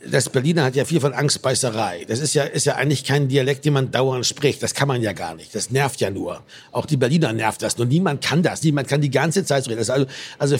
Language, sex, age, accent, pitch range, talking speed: German, male, 60-79, German, 130-160 Hz, 270 wpm